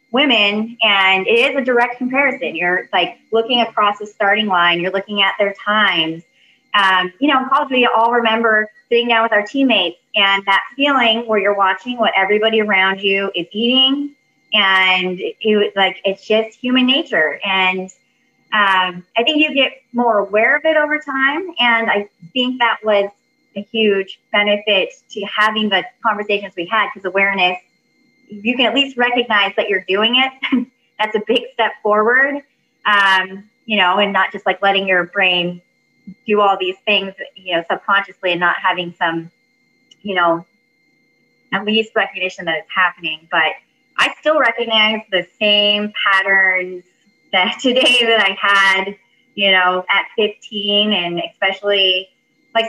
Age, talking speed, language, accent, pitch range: 20-39, 160 wpm, English, American, 190-235 Hz